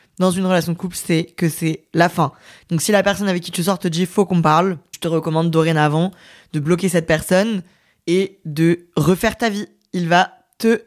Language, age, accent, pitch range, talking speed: French, 20-39, French, 170-210 Hz, 210 wpm